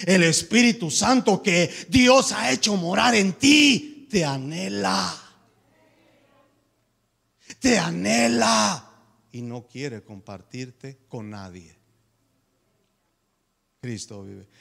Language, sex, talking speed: Spanish, male, 90 wpm